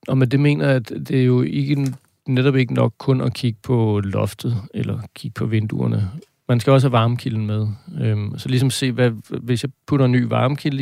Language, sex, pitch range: Danish, male, 110-130 Hz